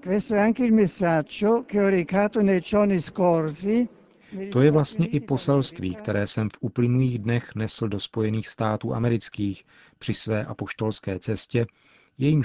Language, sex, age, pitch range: Czech, male, 50-69, 105-145 Hz